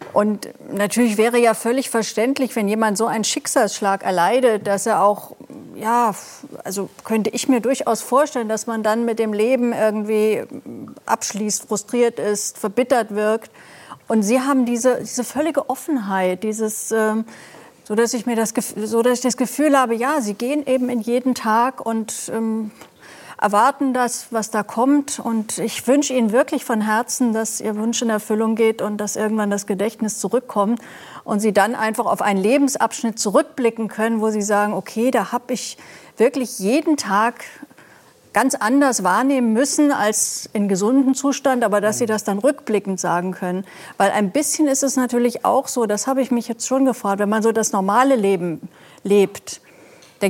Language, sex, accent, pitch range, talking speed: German, female, German, 210-250 Hz, 175 wpm